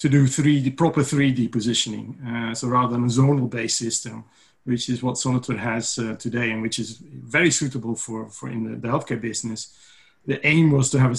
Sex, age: male, 40-59